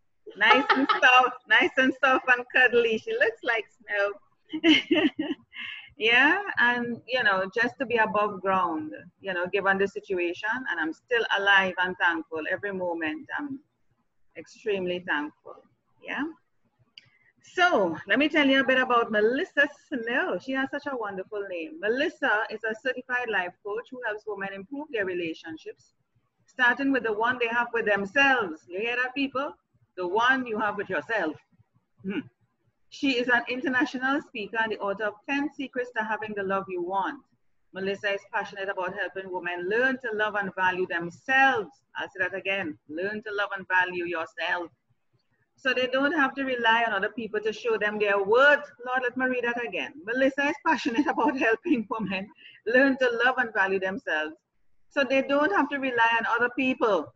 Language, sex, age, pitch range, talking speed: English, female, 30-49, 195-265 Hz, 175 wpm